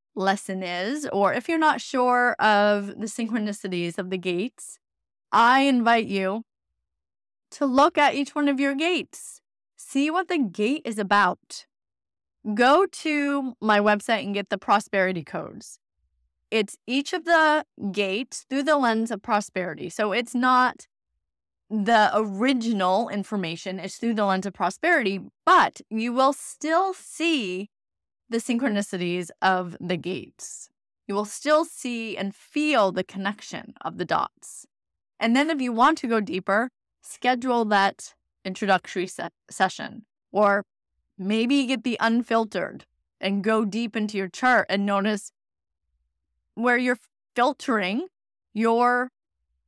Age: 20-39